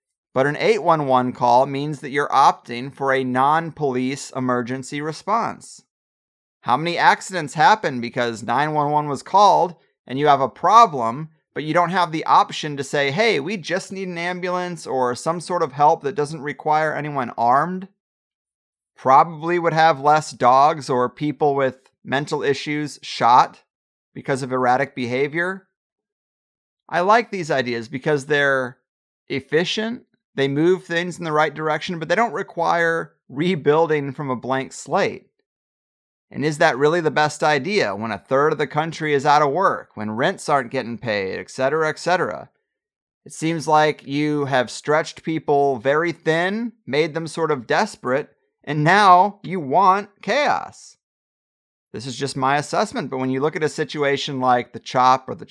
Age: 30-49